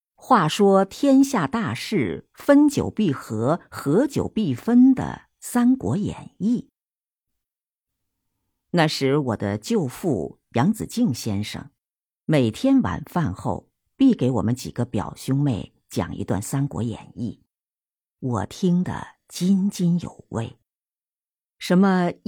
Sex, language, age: female, Chinese, 50-69